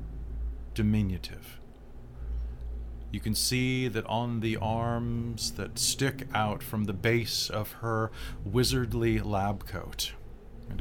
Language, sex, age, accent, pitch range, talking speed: English, male, 30-49, American, 85-110 Hz, 110 wpm